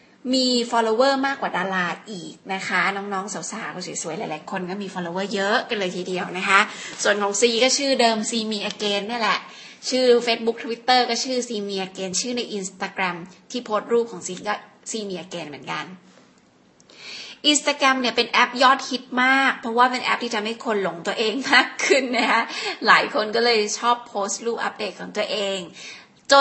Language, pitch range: Thai, 200-255 Hz